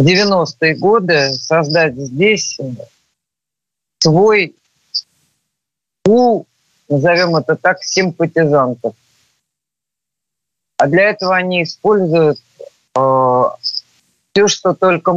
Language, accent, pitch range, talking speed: Russian, native, 125-175 Hz, 80 wpm